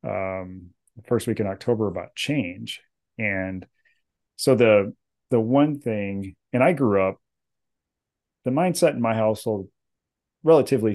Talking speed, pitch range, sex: 130 wpm, 100-120 Hz, male